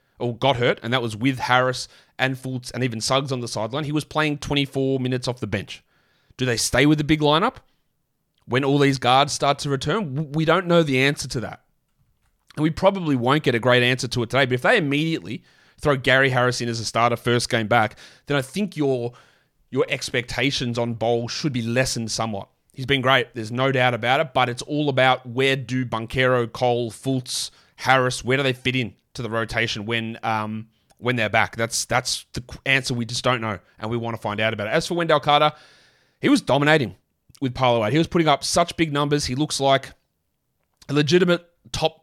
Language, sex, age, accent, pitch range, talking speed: English, male, 30-49, Australian, 125-155 Hz, 215 wpm